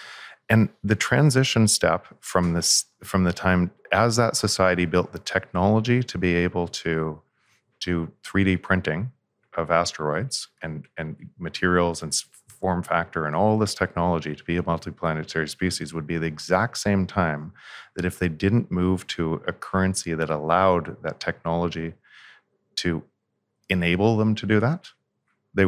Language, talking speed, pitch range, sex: English, 145 wpm, 85-100 Hz, male